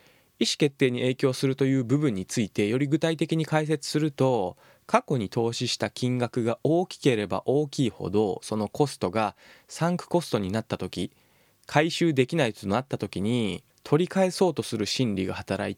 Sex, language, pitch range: male, Japanese, 110-155 Hz